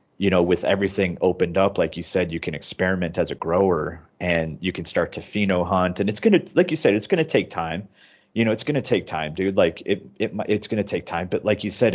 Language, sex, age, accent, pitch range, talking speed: English, male, 30-49, American, 85-100 Hz, 270 wpm